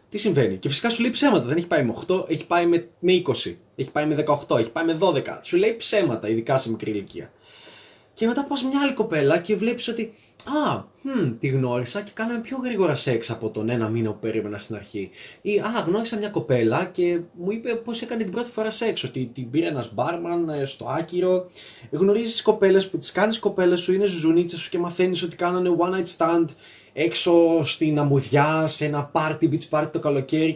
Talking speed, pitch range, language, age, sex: 200 wpm, 140-205 Hz, Greek, 20-39, male